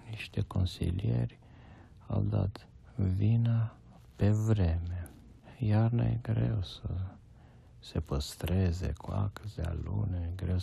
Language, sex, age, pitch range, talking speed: Romanian, male, 50-69, 90-115 Hz, 100 wpm